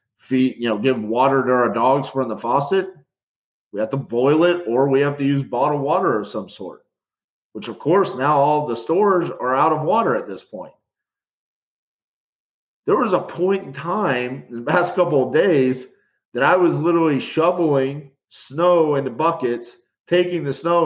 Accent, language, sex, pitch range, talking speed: American, English, male, 125-170 Hz, 185 wpm